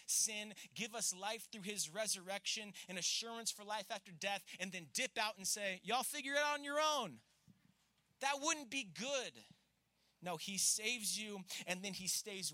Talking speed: 180 wpm